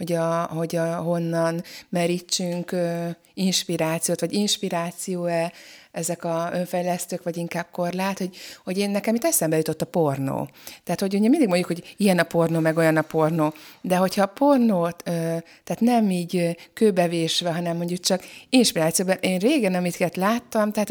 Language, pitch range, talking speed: Hungarian, 165-190 Hz, 165 wpm